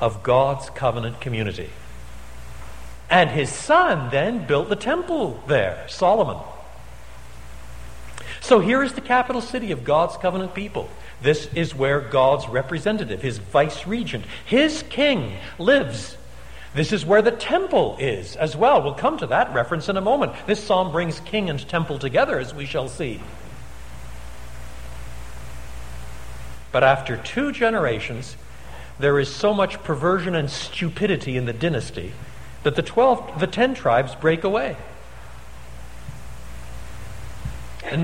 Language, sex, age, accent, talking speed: English, male, 60-79, American, 135 wpm